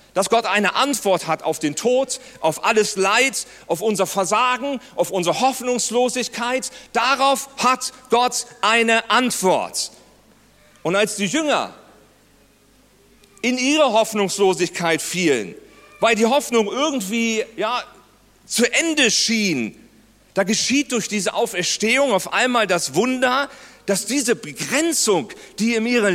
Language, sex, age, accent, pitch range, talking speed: German, male, 40-59, German, 190-255 Hz, 120 wpm